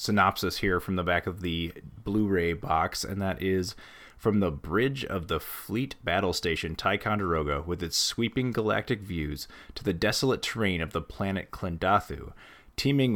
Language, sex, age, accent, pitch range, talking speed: English, male, 30-49, American, 85-115 Hz, 165 wpm